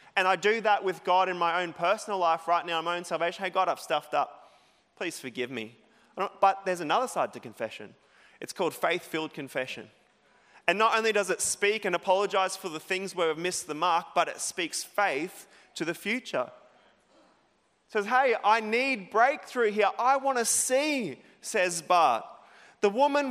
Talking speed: 190 wpm